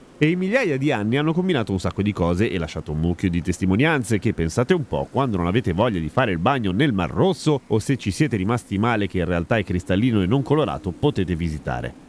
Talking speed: 240 wpm